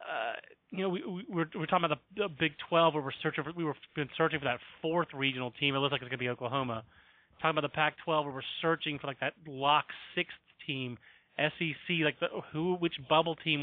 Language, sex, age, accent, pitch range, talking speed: English, male, 30-49, American, 140-165 Hz, 235 wpm